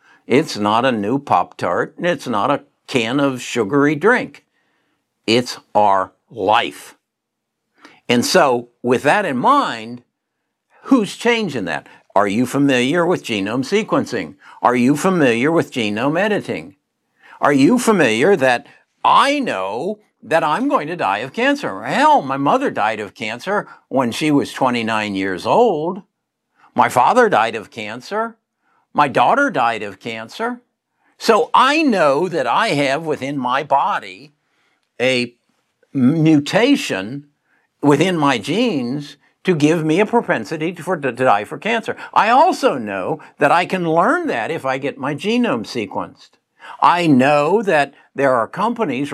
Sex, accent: male, American